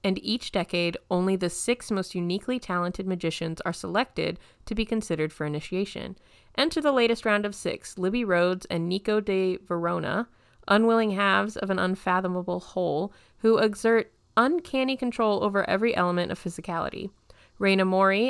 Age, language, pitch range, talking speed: 20-39, English, 180-225 Hz, 150 wpm